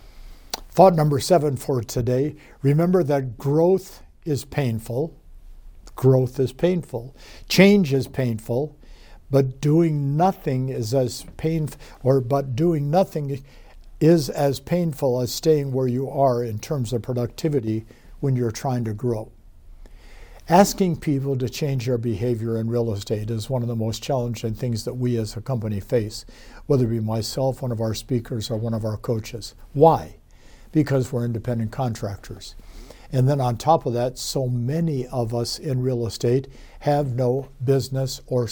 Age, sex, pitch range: 60-79, male, 115-140 Hz